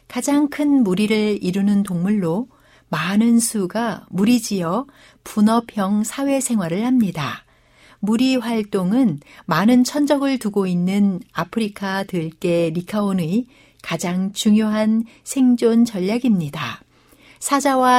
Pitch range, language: 180-245 Hz, Korean